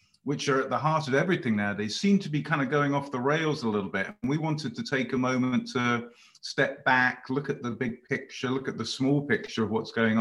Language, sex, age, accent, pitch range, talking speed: English, male, 40-59, British, 130-160 Hz, 260 wpm